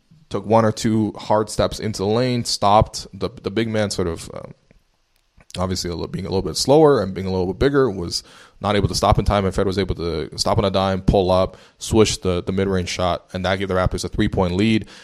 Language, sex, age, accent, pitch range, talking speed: English, male, 20-39, American, 95-115 Hz, 255 wpm